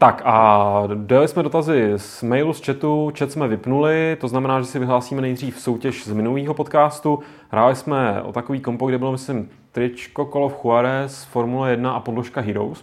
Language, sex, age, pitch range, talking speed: Czech, male, 30-49, 110-140 Hz, 180 wpm